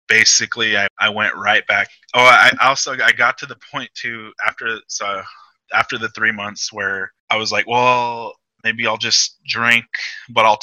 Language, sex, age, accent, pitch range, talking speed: English, male, 20-39, American, 105-115 Hz, 180 wpm